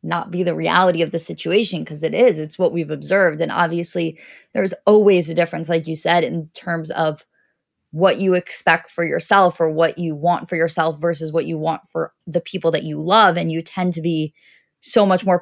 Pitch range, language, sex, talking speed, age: 165-200 Hz, English, female, 215 wpm, 20-39